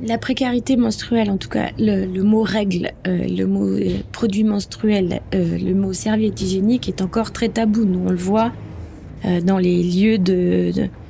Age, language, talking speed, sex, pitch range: 20-39, French, 190 wpm, female, 190-220 Hz